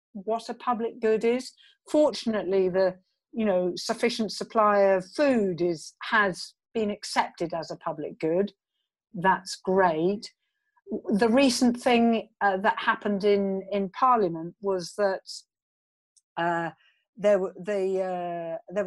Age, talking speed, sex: 50-69, 125 wpm, female